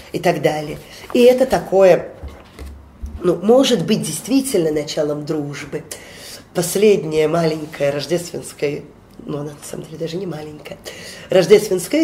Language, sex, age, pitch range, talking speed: Russian, female, 30-49, 160-230 Hz, 120 wpm